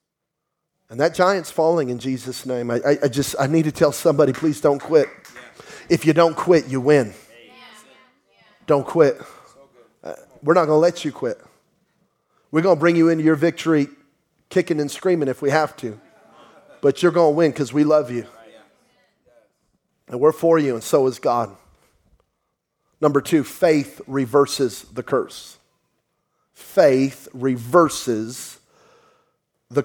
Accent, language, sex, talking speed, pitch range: American, English, male, 145 wpm, 125-165 Hz